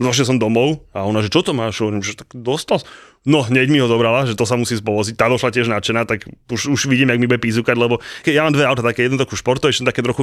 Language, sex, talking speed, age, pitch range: Slovak, male, 270 wpm, 30-49, 115-145 Hz